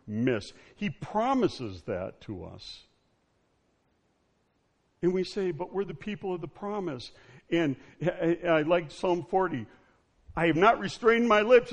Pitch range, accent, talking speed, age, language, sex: 110-175 Hz, American, 150 wpm, 60-79, English, male